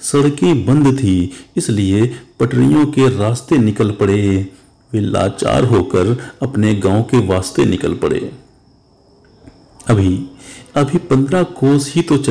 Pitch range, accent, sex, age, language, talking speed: 110-140 Hz, native, male, 50-69, Hindi, 105 wpm